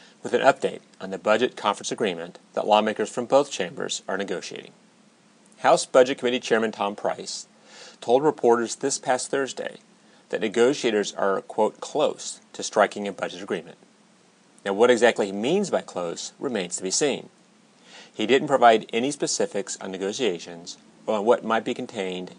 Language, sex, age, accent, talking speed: English, male, 30-49, American, 160 wpm